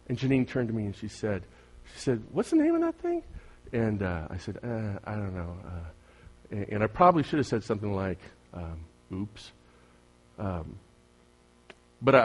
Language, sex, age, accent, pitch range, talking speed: English, male, 40-59, American, 90-145 Hz, 185 wpm